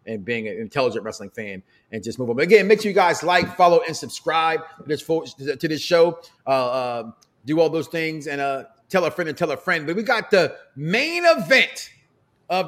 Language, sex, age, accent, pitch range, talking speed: English, male, 30-49, American, 150-235 Hz, 225 wpm